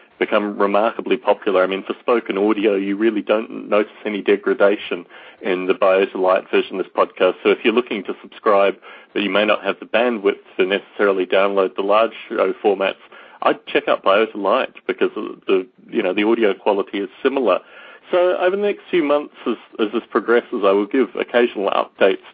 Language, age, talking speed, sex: English, 40-59, 195 wpm, male